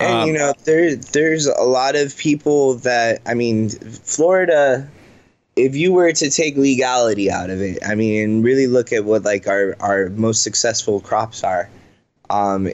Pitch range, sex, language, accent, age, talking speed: 105-130 Hz, male, English, American, 20-39, 170 wpm